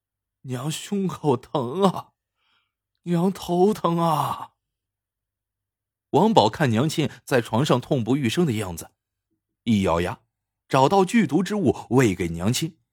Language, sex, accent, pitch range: Chinese, male, native, 100-150 Hz